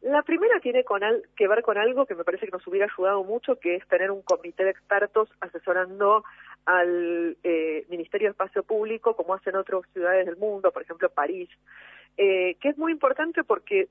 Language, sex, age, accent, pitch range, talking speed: Spanish, female, 40-59, Argentinian, 180-260 Hz, 200 wpm